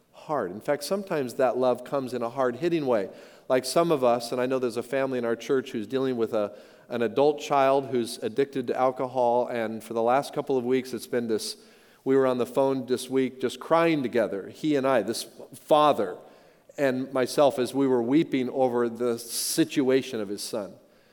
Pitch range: 130-170 Hz